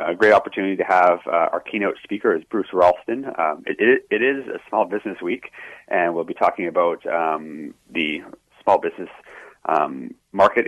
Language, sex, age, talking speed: English, male, 30-49, 180 wpm